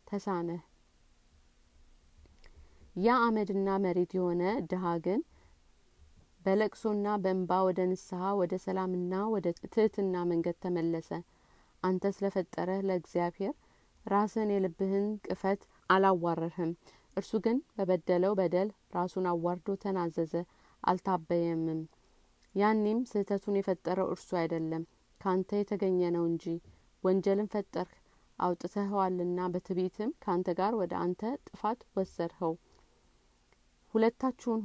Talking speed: 80 wpm